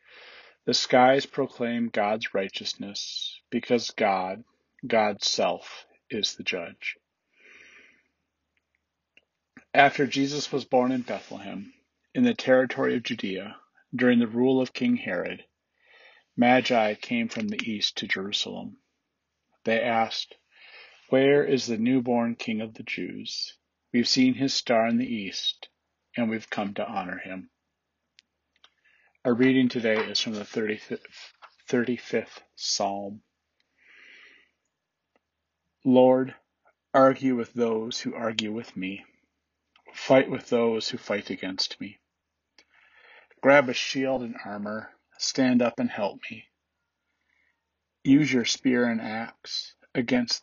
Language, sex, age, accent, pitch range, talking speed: English, male, 40-59, American, 110-135 Hz, 120 wpm